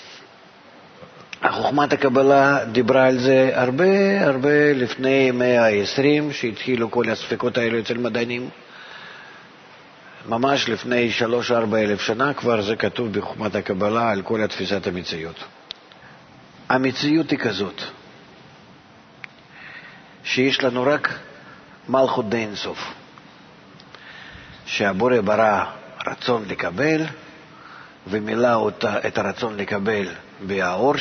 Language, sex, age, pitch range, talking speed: Hebrew, male, 50-69, 115-145 Hz, 90 wpm